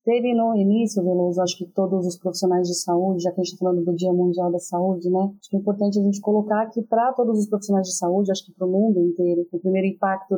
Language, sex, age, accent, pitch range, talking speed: Portuguese, female, 30-49, Brazilian, 185-205 Hz, 265 wpm